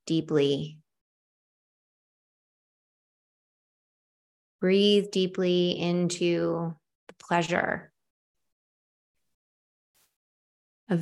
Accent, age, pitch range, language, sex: American, 20-39, 155-180 Hz, English, female